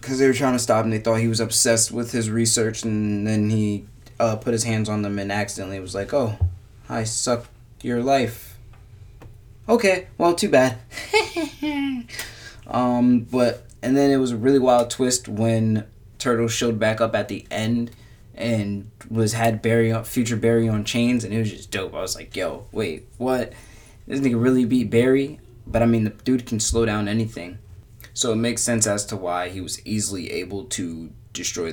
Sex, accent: male, American